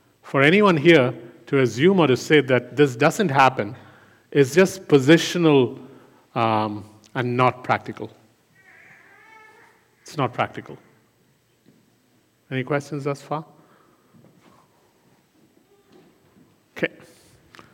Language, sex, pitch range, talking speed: English, male, 120-160 Hz, 90 wpm